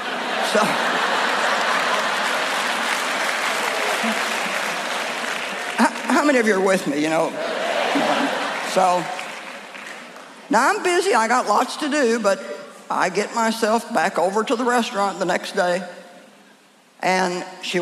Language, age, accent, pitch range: English, 60-79, American, 180-250 Hz